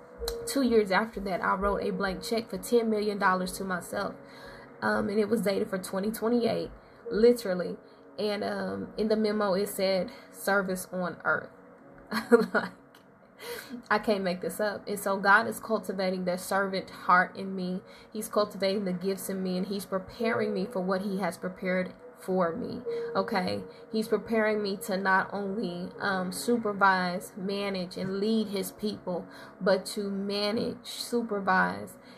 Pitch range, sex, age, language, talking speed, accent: 185-215 Hz, female, 10-29, English, 155 wpm, American